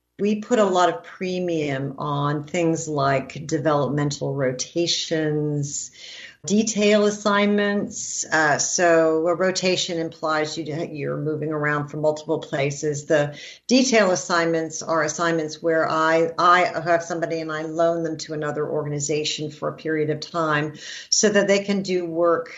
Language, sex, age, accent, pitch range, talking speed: English, female, 50-69, American, 155-185 Hz, 140 wpm